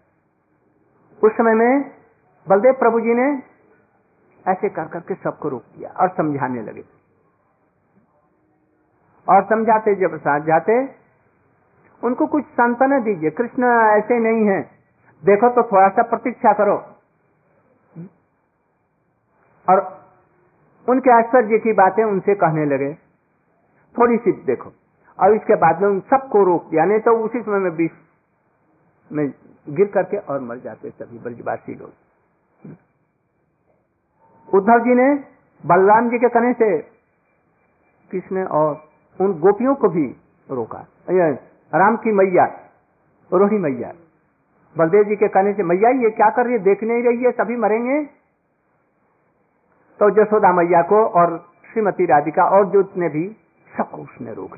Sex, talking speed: male, 130 wpm